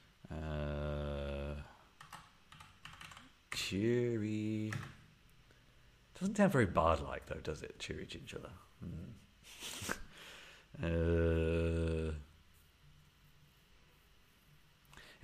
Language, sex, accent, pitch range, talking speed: English, male, British, 80-100 Hz, 45 wpm